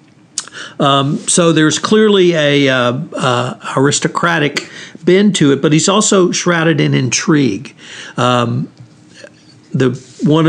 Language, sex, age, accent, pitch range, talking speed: English, male, 60-79, American, 130-155 Hz, 115 wpm